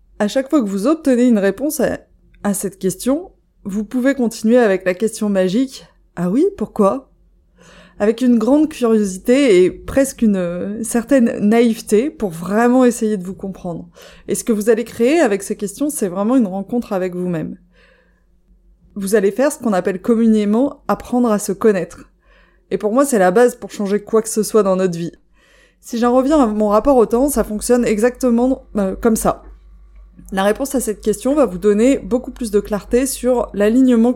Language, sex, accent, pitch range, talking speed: French, female, French, 195-245 Hz, 195 wpm